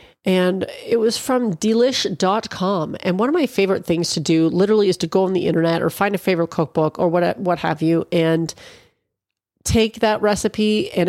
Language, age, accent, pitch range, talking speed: English, 40-59, American, 165-210 Hz, 190 wpm